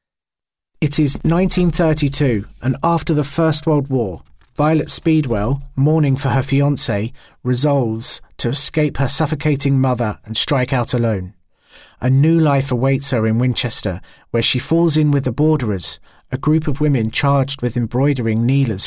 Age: 40-59